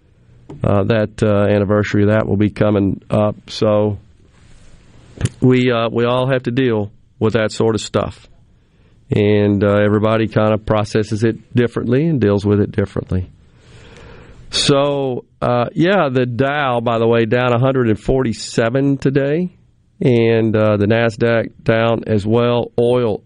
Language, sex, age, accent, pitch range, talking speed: English, male, 50-69, American, 105-130 Hz, 140 wpm